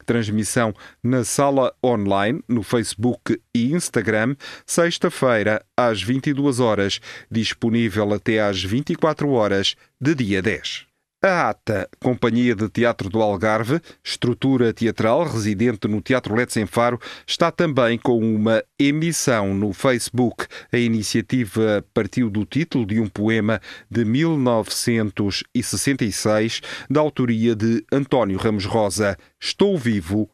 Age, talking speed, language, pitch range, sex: 40-59, 115 wpm, Portuguese, 105-130 Hz, male